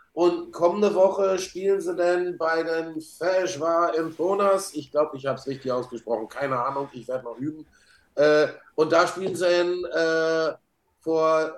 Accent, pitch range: German, 150-185 Hz